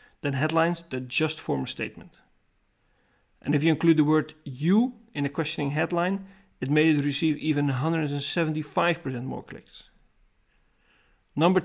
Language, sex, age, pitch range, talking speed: English, male, 40-59, 140-165 Hz, 140 wpm